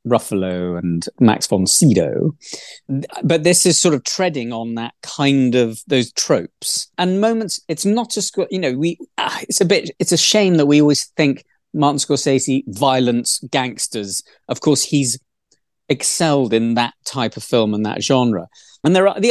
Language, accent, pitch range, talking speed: English, British, 115-160 Hz, 175 wpm